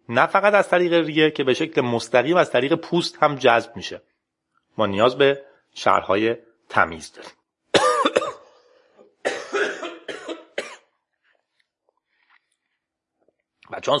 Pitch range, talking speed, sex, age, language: 140-235 Hz, 95 wpm, male, 40-59, Persian